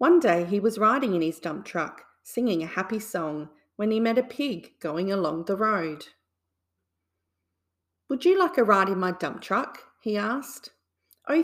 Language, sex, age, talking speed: English, female, 30-49, 180 wpm